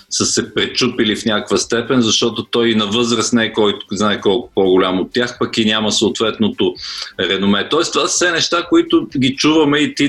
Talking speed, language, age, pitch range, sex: 200 wpm, Bulgarian, 40-59, 115-140 Hz, male